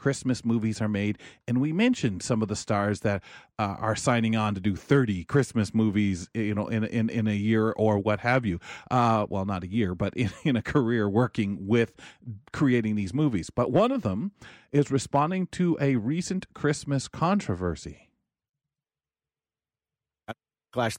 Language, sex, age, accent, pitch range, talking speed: English, male, 40-59, American, 115-160 Hz, 170 wpm